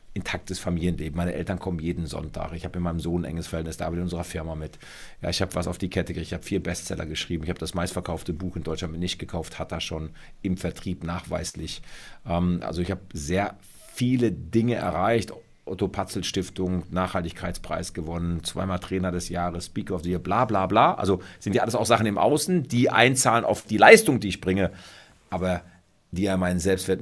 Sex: male